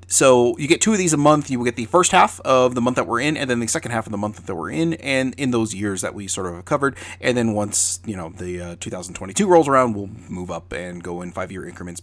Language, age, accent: English, 30-49, American